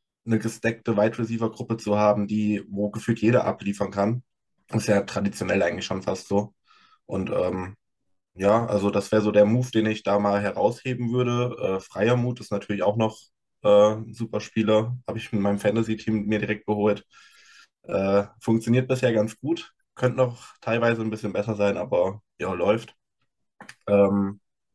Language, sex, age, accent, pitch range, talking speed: German, male, 20-39, German, 100-115 Hz, 165 wpm